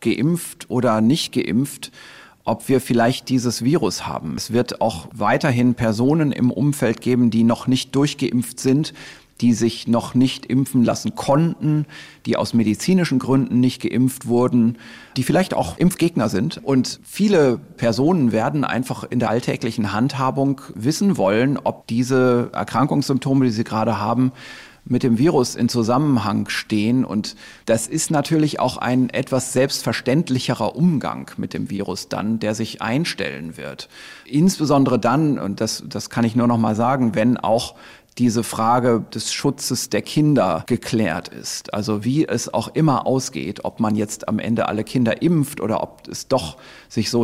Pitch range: 110-135 Hz